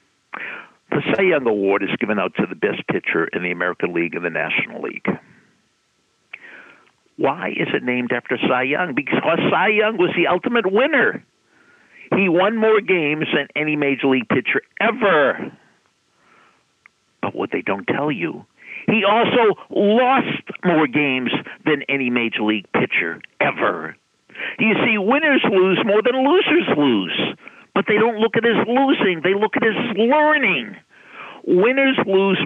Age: 60-79